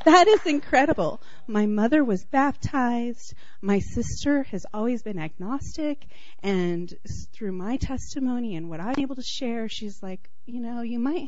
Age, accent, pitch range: 30-49, American, 190-280 Hz